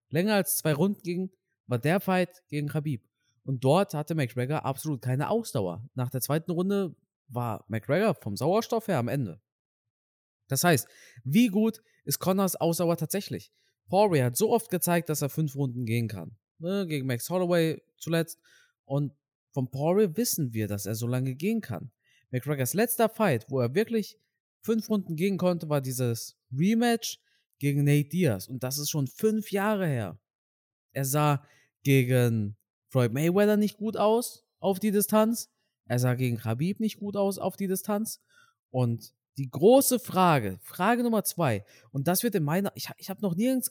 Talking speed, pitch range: 165 wpm, 130-200 Hz